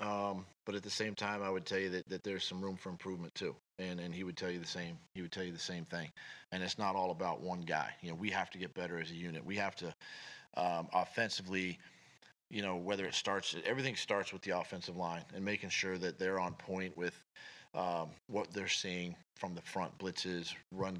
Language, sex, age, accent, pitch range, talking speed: English, male, 40-59, American, 90-110 Hz, 235 wpm